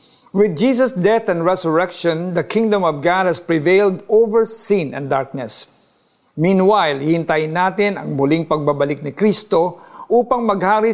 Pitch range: 160-215 Hz